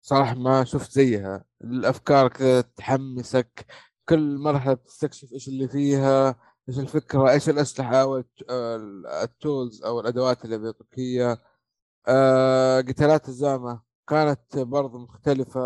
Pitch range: 130-155 Hz